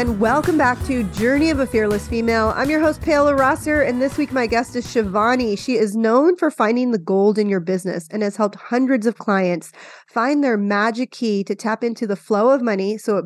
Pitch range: 210-265 Hz